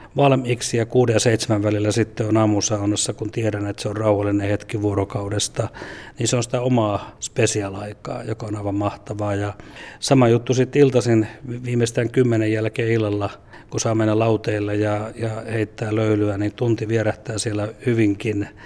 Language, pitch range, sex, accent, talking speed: Finnish, 105-115 Hz, male, native, 160 wpm